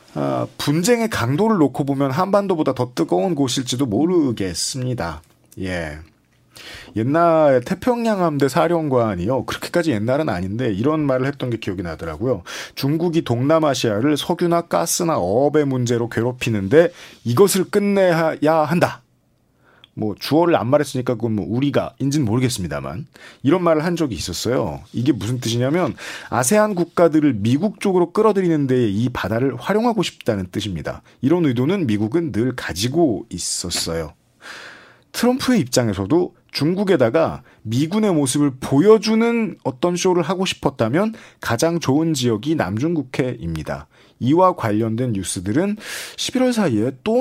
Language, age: Korean, 40-59